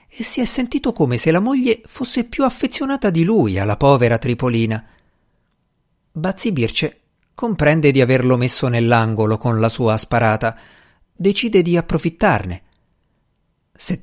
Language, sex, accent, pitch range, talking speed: Italian, male, native, 120-195 Hz, 135 wpm